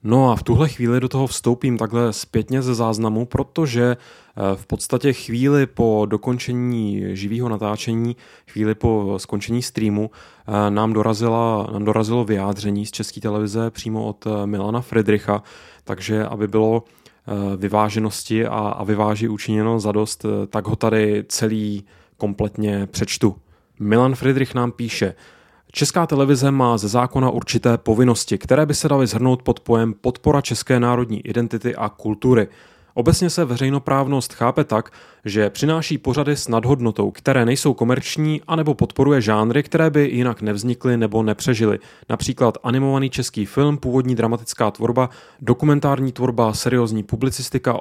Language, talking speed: Czech, 135 wpm